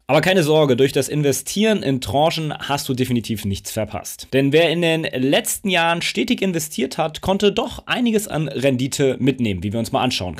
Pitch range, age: 135-190 Hz, 30-49